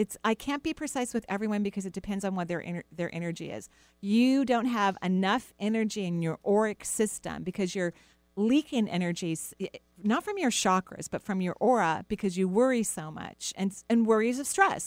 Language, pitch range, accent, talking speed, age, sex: English, 175-230 Hz, American, 190 wpm, 40-59, female